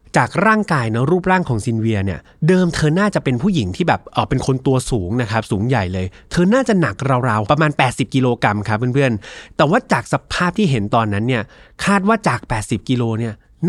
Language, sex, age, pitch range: Thai, male, 20-39, 115-170 Hz